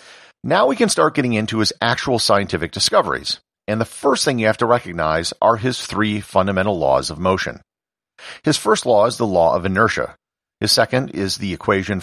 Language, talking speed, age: English, 190 wpm, 50-69